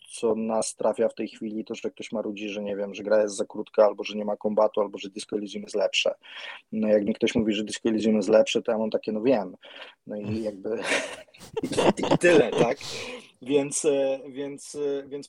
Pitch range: 110-140 Hz